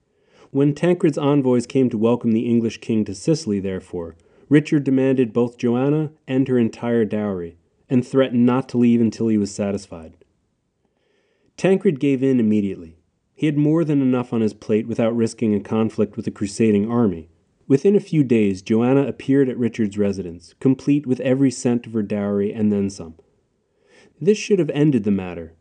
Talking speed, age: 175 wpm, 30-49